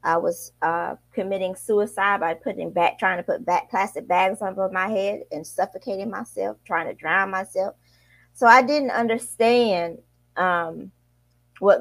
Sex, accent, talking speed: female, American, 150 wpm